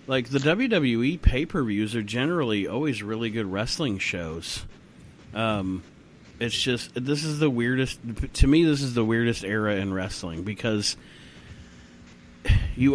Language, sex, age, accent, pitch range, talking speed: English, male, 30-49, American, 105-120 Hz, 135 wpm